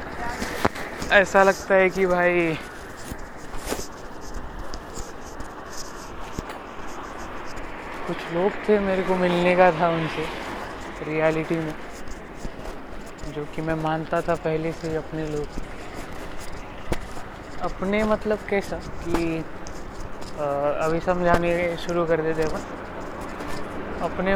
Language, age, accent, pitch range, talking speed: Marathi, 20-39, native, 155-180 Hz, 70 wpm